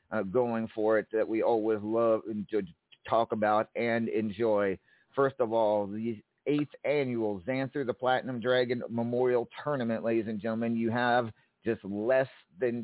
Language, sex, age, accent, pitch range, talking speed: English, male, 50-69, American, 110-135 Hz, 155 wpm